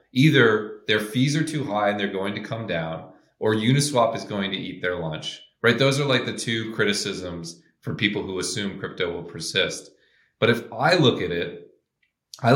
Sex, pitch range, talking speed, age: male, 95-125 Hz, 195 wpm, 30-49